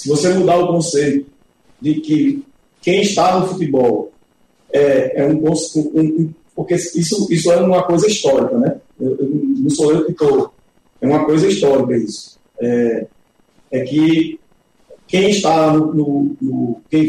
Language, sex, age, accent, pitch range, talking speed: Portuguese, male, 40-59, Brazilian, 145-170 Hz, 160 wpm